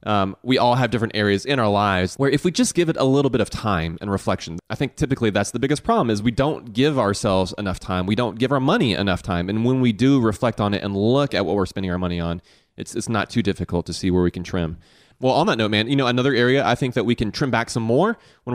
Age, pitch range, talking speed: 30-49, 105-140 Hz, 290 wpm